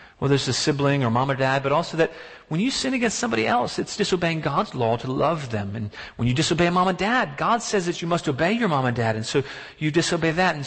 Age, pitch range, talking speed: 40-59, 140-205 Hz, 265 wpm